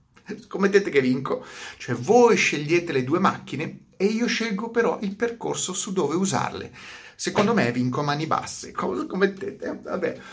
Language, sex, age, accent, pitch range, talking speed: Italian, male, 30-49, native, 120-160 Hz, 150 wpm